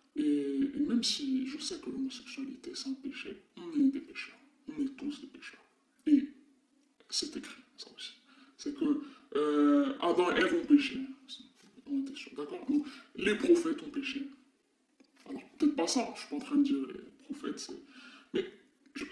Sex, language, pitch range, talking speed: female, French, 270-300 Hz, 180 wpm